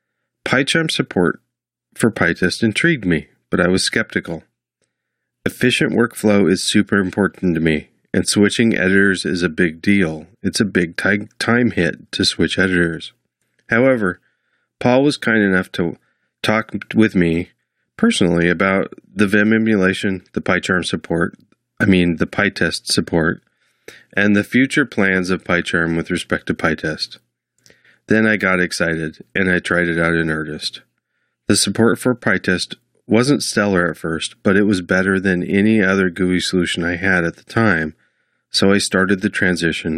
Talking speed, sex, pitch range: 155 wpm, male, 85-105 Hz